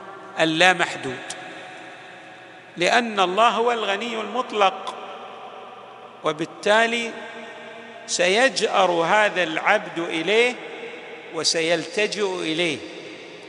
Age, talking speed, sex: 50-69, 60 wpm, male